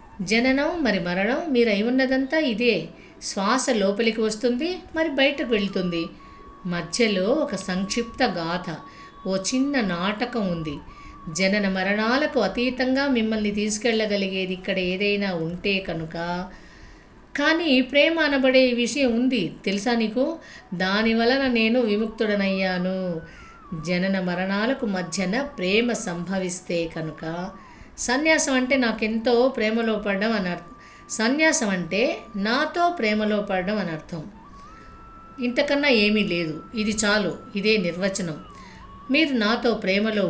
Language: Telugu